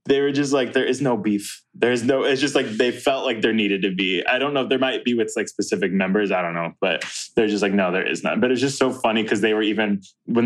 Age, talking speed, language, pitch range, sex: 20-39, 300 wpm, English, 105-130 Hz, male